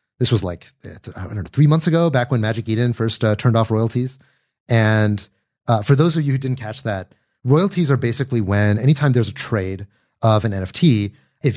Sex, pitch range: male, 110-140 Hz